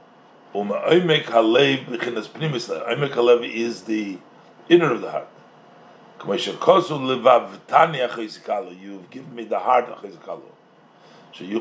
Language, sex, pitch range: English, male, 115-155 Hz